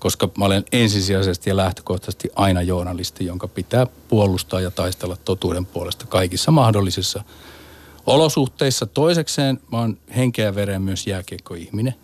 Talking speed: 125 wpm